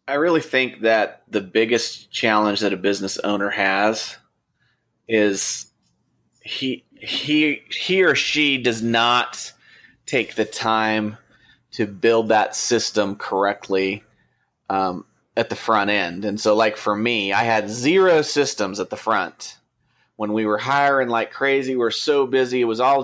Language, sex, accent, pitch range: English, male, American, 105-130 Hz